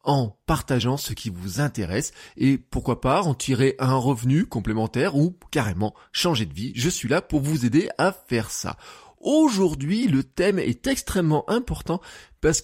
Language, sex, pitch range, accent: French, male, 120-180 Hz, French